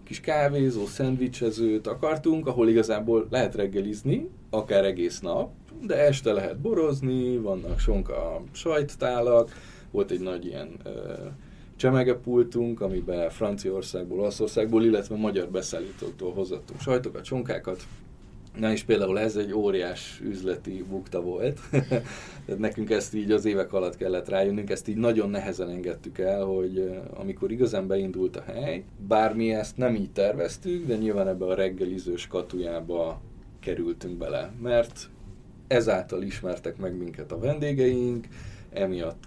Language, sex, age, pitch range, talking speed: Hungarian, male, 20-39, 95-125 Hz, 125 wpm